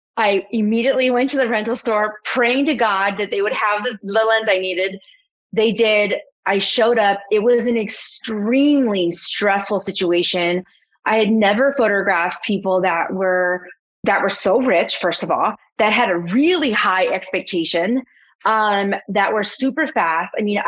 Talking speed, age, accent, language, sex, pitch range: 165 wpm, 30-49, American, English, female, 185-235 Hz